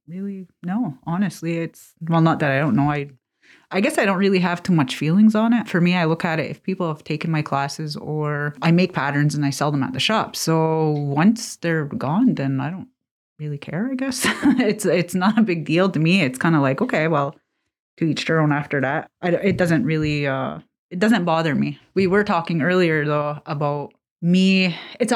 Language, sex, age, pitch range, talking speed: English, female, 30-49, 145-185 Hz, 220 wpm